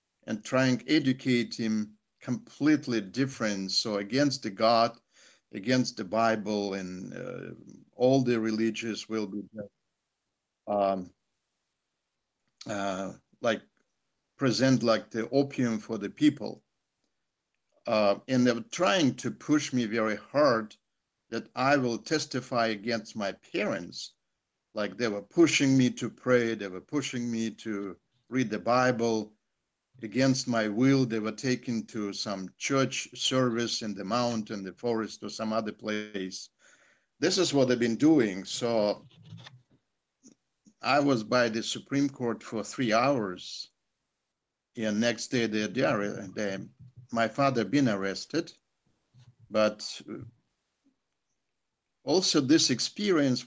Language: English